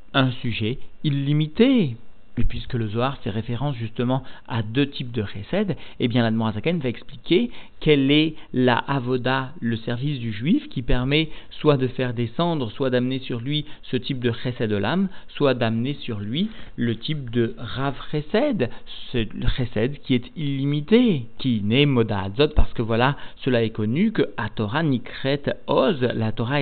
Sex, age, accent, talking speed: male, 50-69, French, 170 wpm